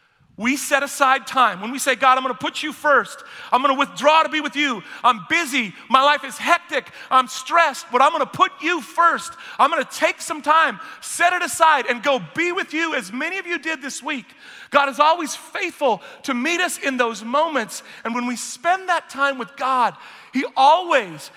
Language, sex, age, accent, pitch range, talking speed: English, male, 40-59, American, 225-305 Hz, 210 wpm